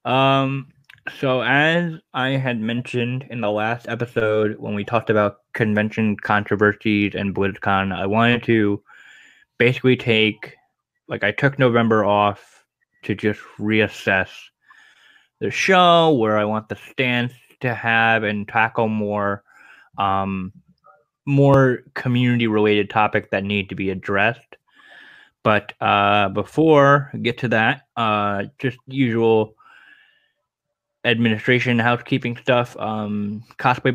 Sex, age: male, 10-29